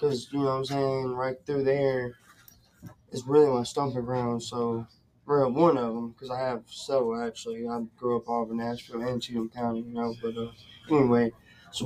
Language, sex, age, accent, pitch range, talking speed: English, male, 20-39, American, 120-140 Hz, 200 wpm